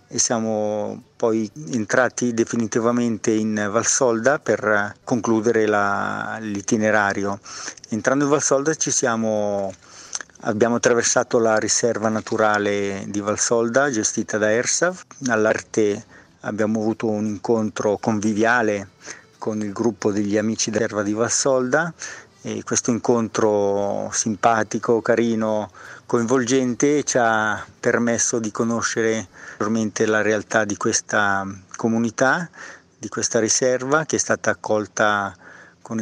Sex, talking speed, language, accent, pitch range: male, 110 wpm, Italian, native, 105-120 Hz